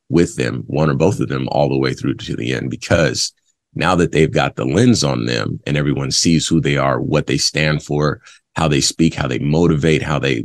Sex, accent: male, American